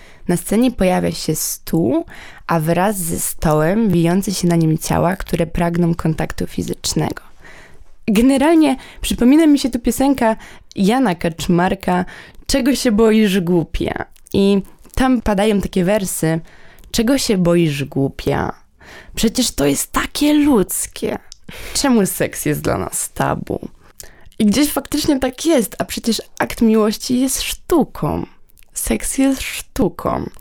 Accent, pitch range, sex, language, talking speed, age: native, 170-220 Hz, female, Polish, 125 wpm, 20-39